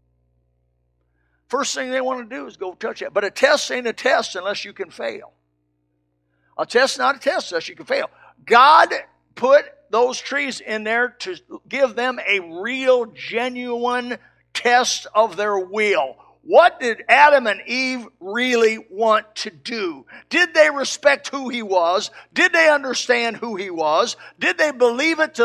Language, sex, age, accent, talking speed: English, male, 50-69, American, 165 wpm